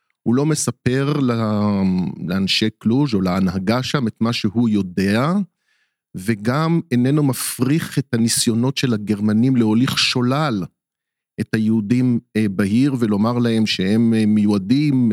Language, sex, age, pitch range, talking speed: Hebrew, male, 50-69, 110-140 Hz, 110 wpm